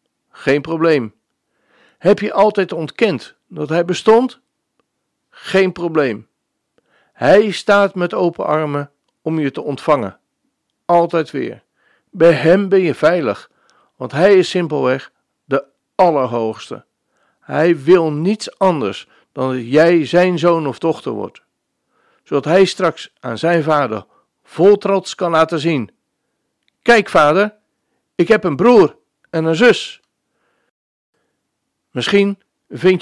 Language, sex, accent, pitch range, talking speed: Dutch, male, Dutch, 150-190 Hz, 120 wpm